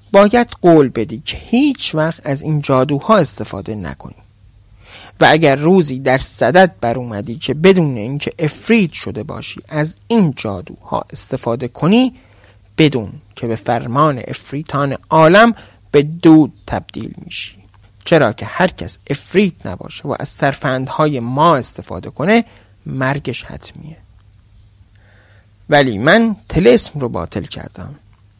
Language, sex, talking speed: Persian, male, 125 wpm